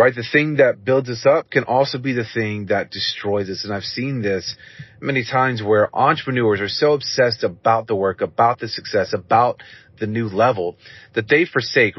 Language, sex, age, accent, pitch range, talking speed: English, male, 30-49, American, 110-130 Hz, 195 wpm